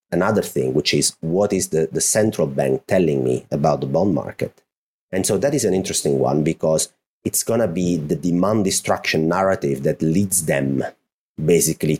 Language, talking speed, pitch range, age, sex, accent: English, 175 wpm, 75-100 Hz, 30-49, male, Italian